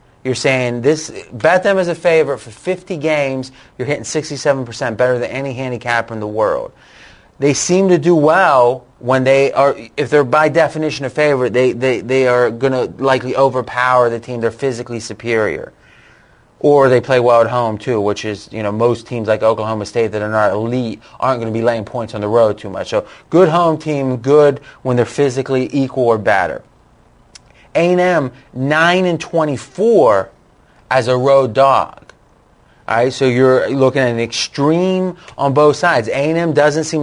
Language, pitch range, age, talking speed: English, 120-150 Hz, 30-49, 180 wpm